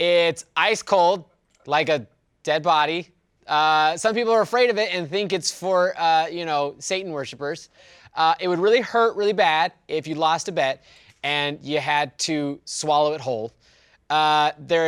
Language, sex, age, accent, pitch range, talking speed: English, male, 20-39, American, 155-200 Hz, 180 wpm